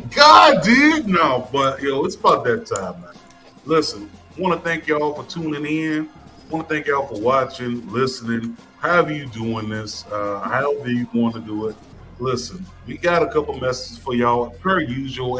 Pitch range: 115-155 Hz